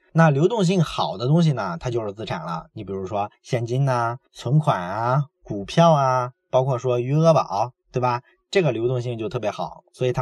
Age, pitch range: 20-39, 125-165 Hz